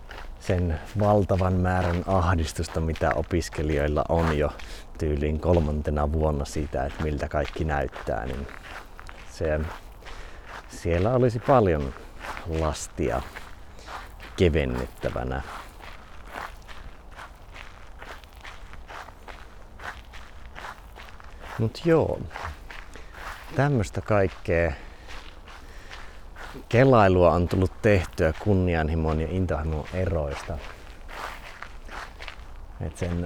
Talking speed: 65 wpm